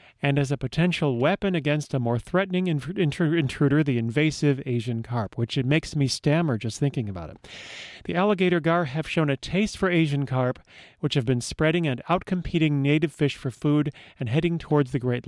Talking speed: 195 wpm